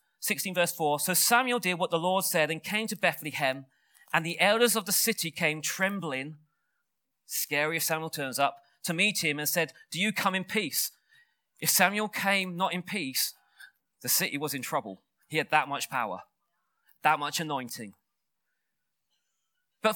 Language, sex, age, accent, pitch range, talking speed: English, male, 30-49, British, 155-210 Hz, 170 wpm